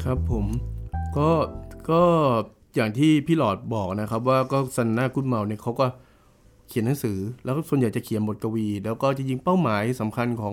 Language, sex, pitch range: Thai, male, 100-130 Hz